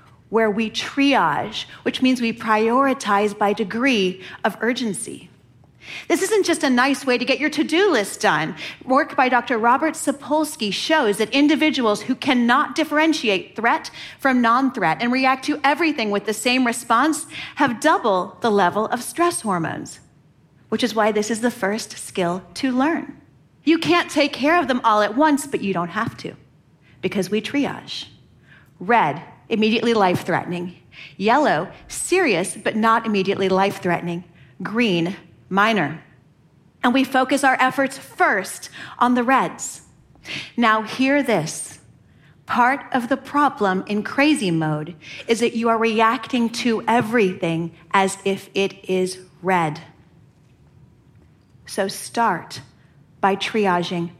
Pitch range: 190-265 Hz